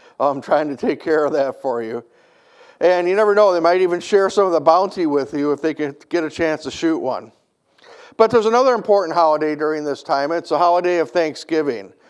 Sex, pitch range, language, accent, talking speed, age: male, 150-190 Hz, English, American, 225 wpm, 50-69